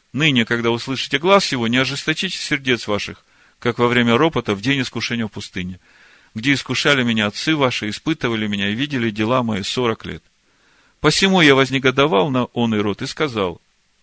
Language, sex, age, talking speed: Russian, male, 40-59, 170 wpm